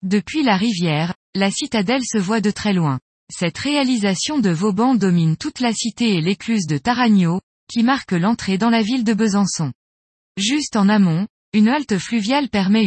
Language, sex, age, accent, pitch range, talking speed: French, female, 20-39, French, 175-240 Hz, 175 wpm